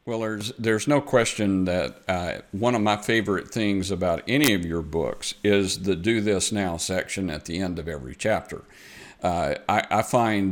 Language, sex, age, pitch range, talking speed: English, male, 50-69, 95-115 Hz, 190 wpm